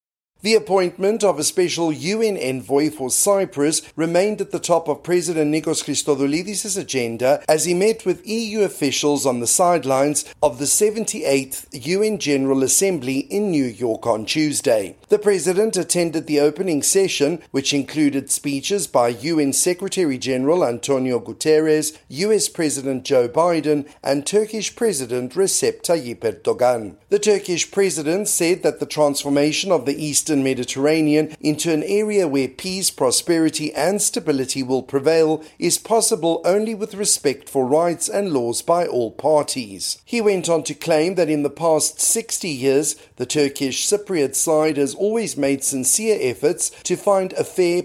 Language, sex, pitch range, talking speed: English, male, 140-190 Hz, 150 wpm